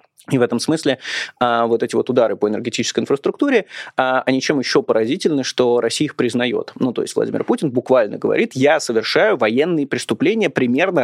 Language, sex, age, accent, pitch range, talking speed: Russian, male, 20-39, native, 120-170 Hz, 180 wpm